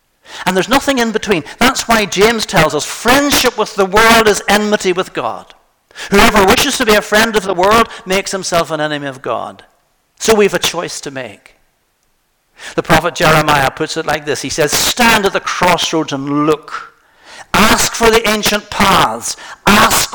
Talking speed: 180 wpm